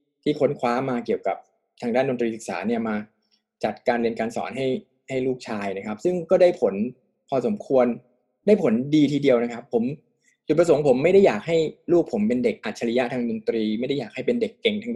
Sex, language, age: male, Thai, 20-39